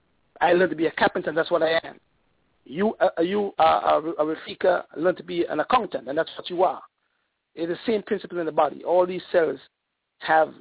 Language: English